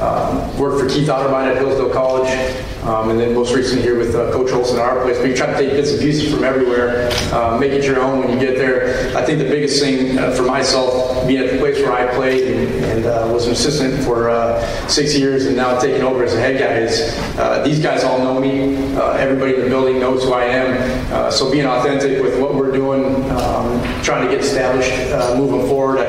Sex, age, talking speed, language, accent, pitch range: male, 30-49, 240 wpm, English, American, 125-135 Hz